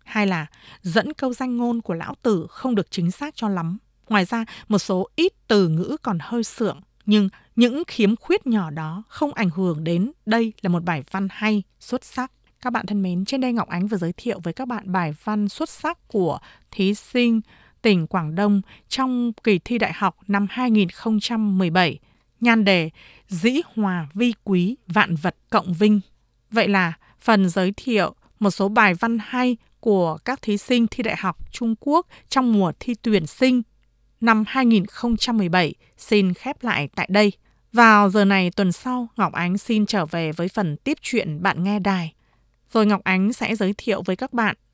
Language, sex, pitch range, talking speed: Vietnamese, female, 185-235 Hz, 190 wpm